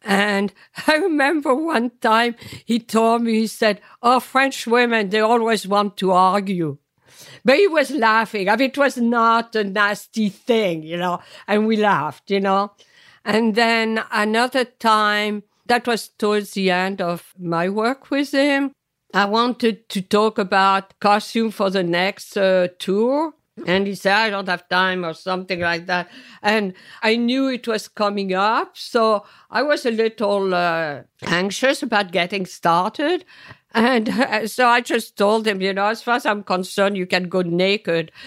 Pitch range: 190-235 Hz